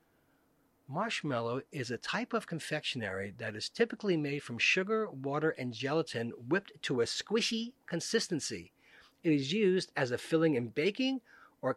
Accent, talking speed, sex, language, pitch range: American, 150 wpm, male, English, 140-200 Hz